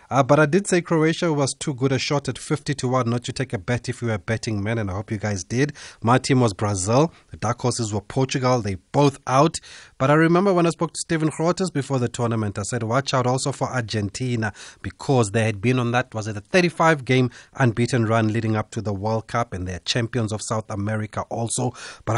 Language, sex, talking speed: English, male, 240 wpm